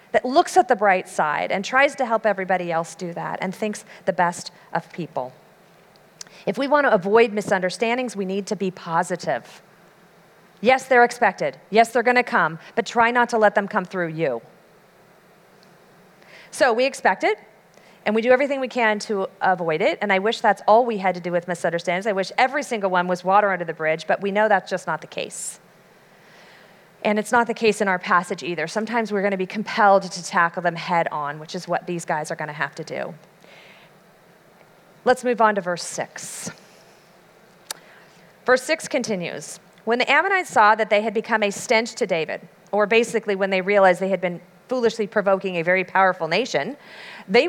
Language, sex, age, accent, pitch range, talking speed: English, female, 40-59, American, 180-225 Hz, 200 wpm